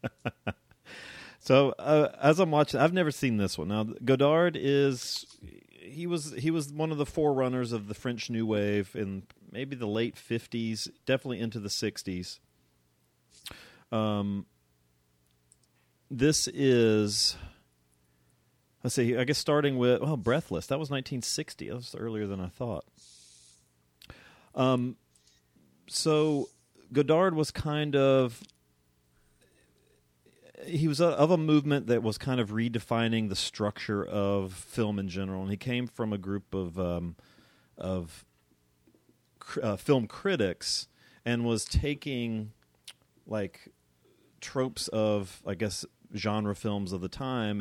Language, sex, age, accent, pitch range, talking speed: English, male, 40-59, American, 90-130 Hz, 130 wpm